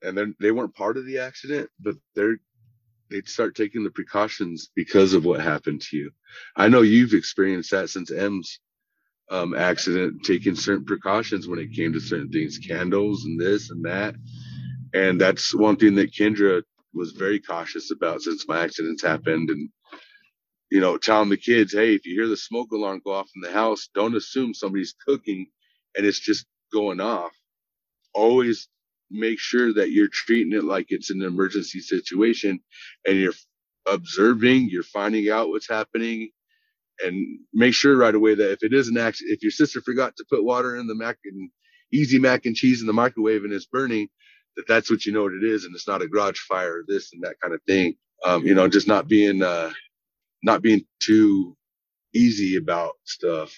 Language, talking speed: English, 190 wpm